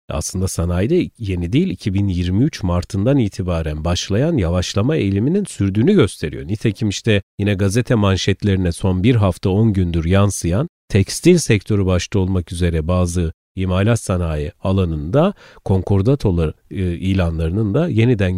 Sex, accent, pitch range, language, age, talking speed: male, native, 90-115 Hz, Turkish, 40-59, 120 wpm